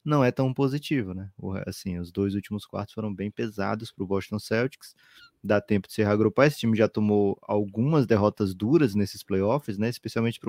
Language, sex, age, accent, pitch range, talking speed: Portuguese, male, 20-39, Brazilian, 105-135 Hz, 195 wpm